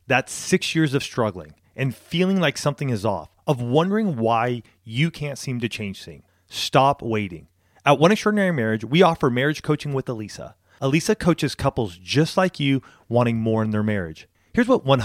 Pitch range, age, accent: 110-155 Hz, 30-49, American